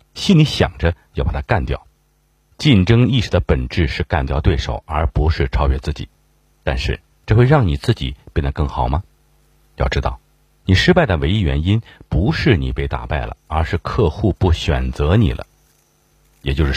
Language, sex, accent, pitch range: Chinese, male, native, 70-95 Hz